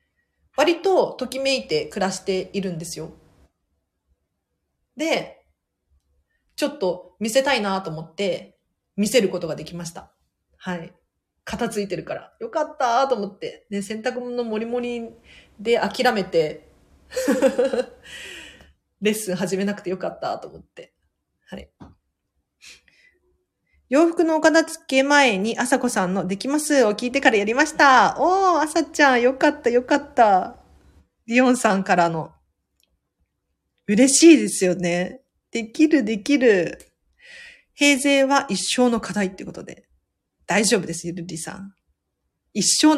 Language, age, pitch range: Japanese, 40-59, 170-270 Hz